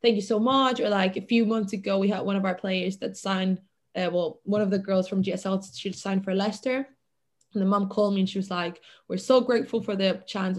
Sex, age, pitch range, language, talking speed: female, 20-39, 180-210 Hz, English, 255 wpm